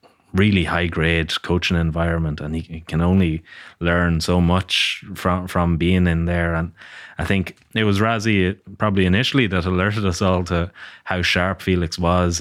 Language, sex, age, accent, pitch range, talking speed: English, male, 20-39, Irish, 80-90 Hz, 165 wpm